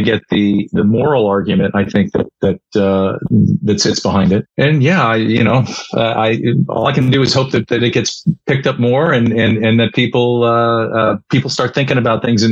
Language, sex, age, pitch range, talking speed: English, male, 40-59, 110-135 Hz, 225 wpm